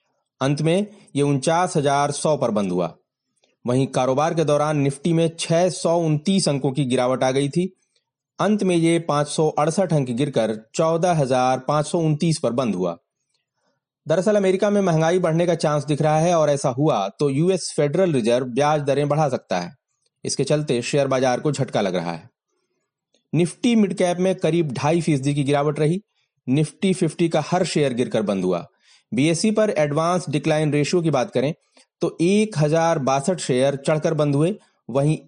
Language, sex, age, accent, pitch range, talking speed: Hindi, male, 30-49, native, 140-170 Hz, 165 wpm